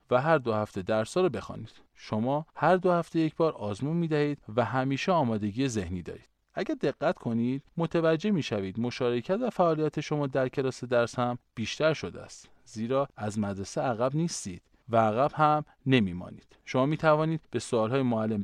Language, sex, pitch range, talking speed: Persian, male, 110-160 Hz, 175 wpm